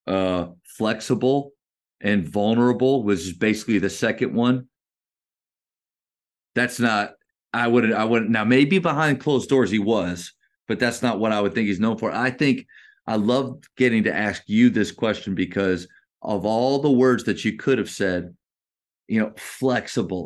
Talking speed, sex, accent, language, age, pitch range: 165 wpm, male, American, English, 30-49, 100-130 Hz